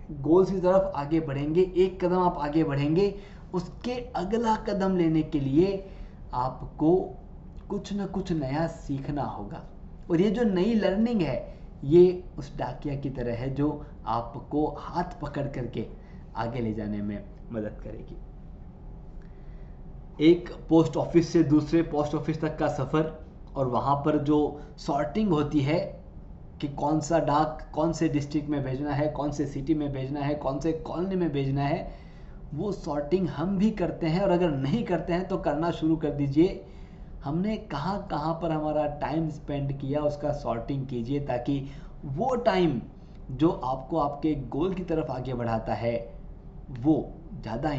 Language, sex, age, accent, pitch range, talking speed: Hindi, male, 20-39, native, 140-170 Hz, 160 wpm